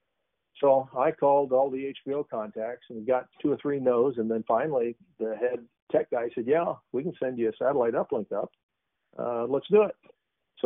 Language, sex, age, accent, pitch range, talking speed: English, male, 50-69, American, 105-135 Hz, 195 wpm